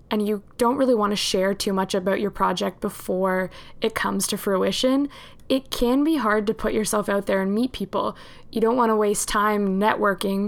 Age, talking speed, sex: 20-39, 205 wpm, female